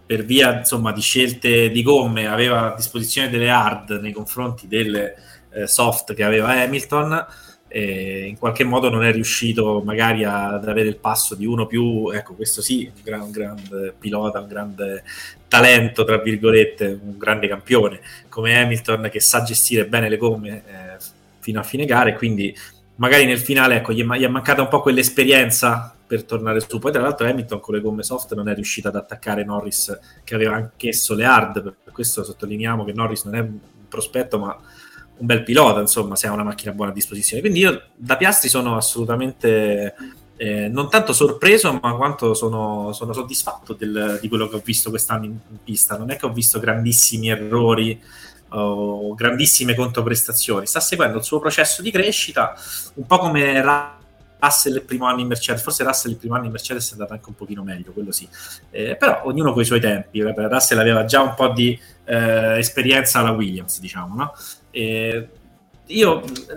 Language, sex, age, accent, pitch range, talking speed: Italian, male, 20-39, native, 105-125 Hz, 185 wpm